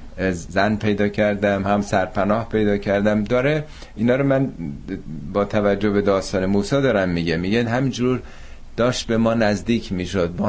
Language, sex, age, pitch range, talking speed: Persian, male, 50-69, 85-110 Hz, 150 wpm